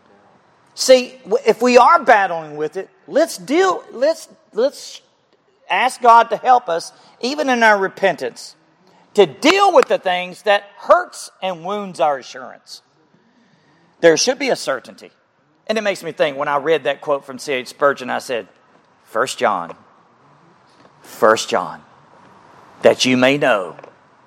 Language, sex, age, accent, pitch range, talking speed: English, male, 40-59, American, 140-215 Hz, 150 wpm